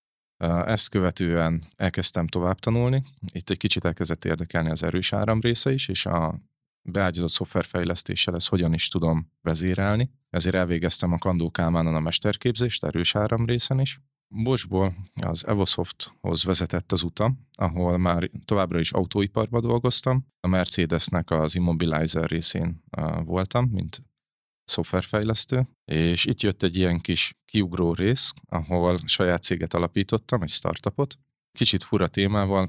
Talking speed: 135 wpm